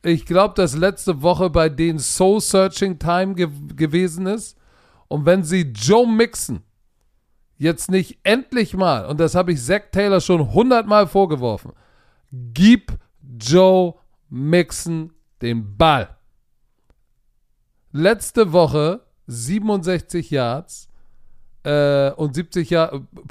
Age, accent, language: 40-59, German, German